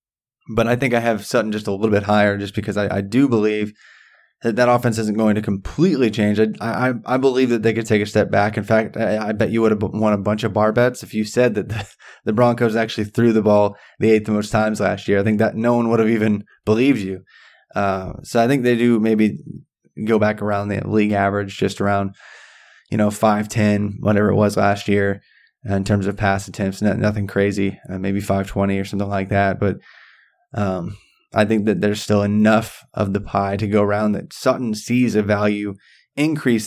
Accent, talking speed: American, 225 wpm